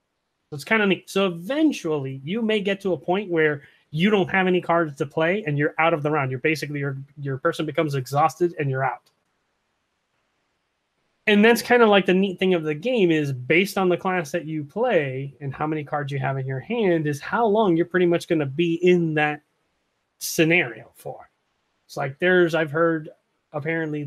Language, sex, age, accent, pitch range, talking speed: English, male, 30-49, American, 145-180 Hz, 210 wpm